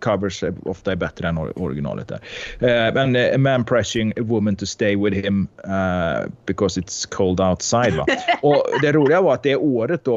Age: 30-49